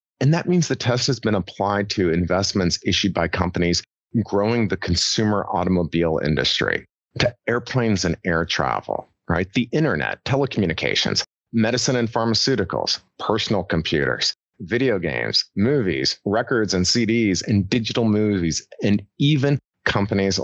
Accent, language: American, English